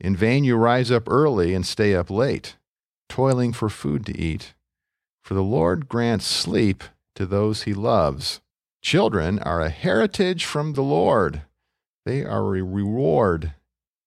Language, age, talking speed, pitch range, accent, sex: English, 50-69, 150 wpm, 85-115 Hz, American, male